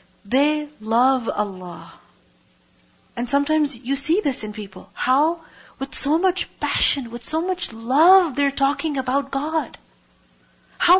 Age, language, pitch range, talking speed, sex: 40-59, English, 220-290 Hz, 130 wpm, female